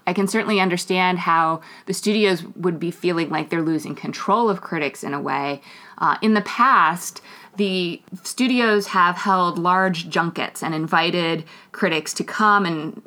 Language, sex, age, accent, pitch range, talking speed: English, female, 30-49, American, 165-205 Hz, 160 wpm